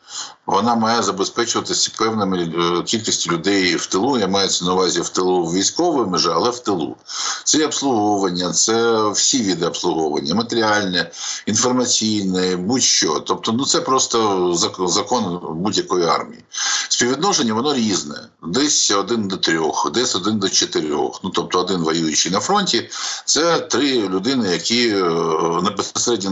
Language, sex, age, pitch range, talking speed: Ukrainian, male, 60-79, 90-125 Hz, 135 wpm